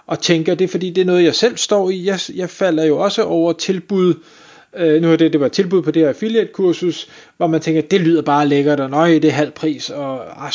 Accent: native